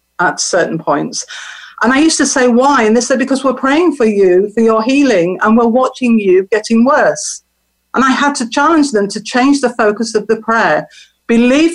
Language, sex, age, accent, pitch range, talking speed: English, female, 50-69, British, 200-250 Hz, 205 wpm